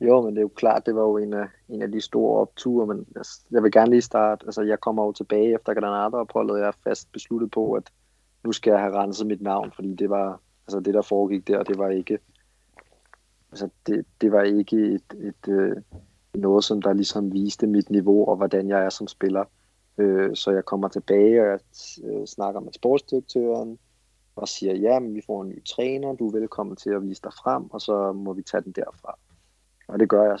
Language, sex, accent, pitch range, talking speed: Danish, male, native, 100-115 Hz, 205 wpm